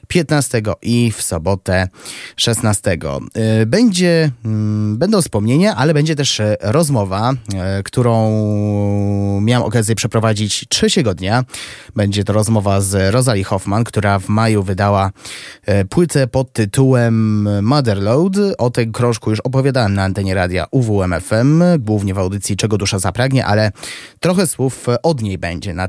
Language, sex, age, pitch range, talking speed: Polish, male, 20-39, 100-140 Hz, 125 wpm